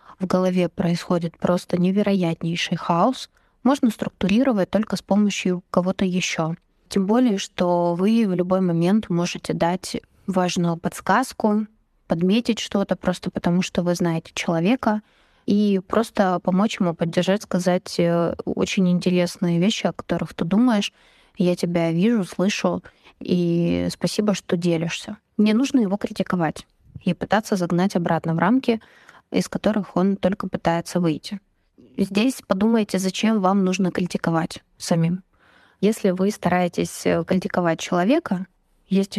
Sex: female